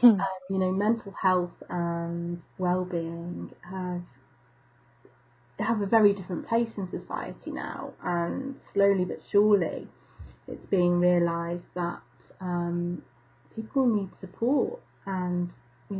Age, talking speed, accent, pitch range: 30-49, 115 wpm, British, 170-200 Hz